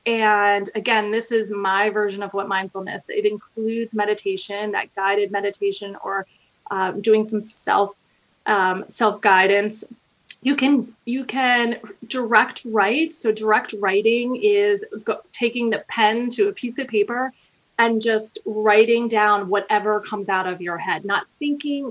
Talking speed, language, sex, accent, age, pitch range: 150 wpm, English, female, American, 30-49, 205-245 Hz